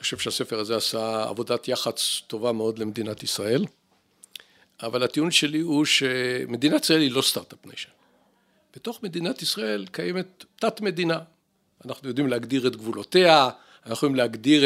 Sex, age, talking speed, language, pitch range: male, 50-69, 140 wpm, Hebrew, 120-155 Hz